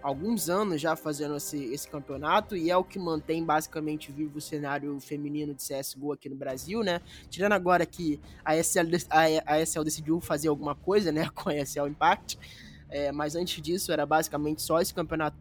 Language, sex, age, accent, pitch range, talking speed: Portuguese, male, 20-39, Brazilian, 150-175 Hz, 190 wpm